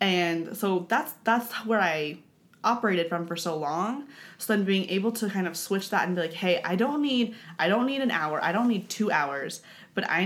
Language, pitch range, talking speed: English, 170-220 Hz, 230 wpm